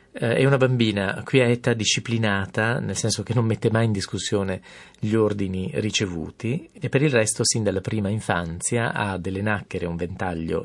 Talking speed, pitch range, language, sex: 170 wpm, 90-115 Hz, Italian, male